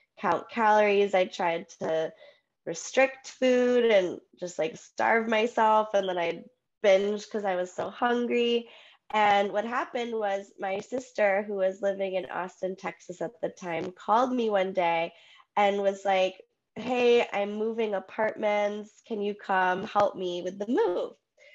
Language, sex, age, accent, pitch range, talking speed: English, female, 20-39, American, 180-240 Hz, 155 wpm